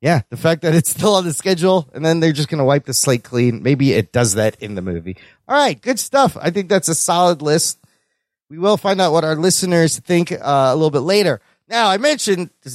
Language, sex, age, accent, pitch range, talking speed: English, male, 30-49, American, 145-195 Hz, 250 wpm